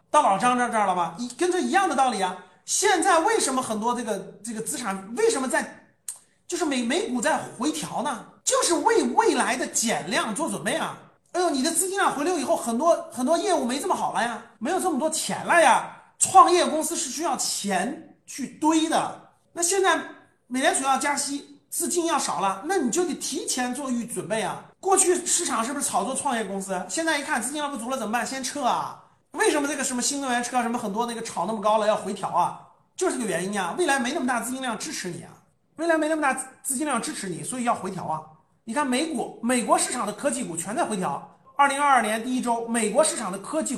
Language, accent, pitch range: Chinese, native, 225-320 Hz